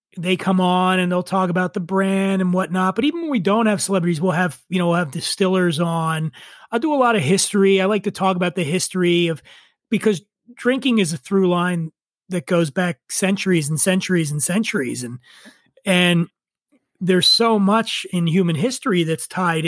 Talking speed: 195 wpm